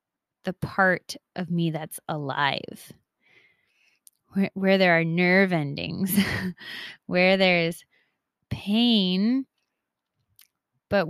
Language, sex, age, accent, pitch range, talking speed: English, female, 20-39, American, 170-205 Hz, 85 wpm